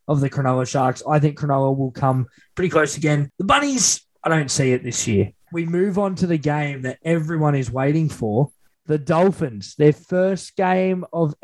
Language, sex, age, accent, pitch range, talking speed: English, male, 20-39, Australian, 140-170 Hz, 195 wpm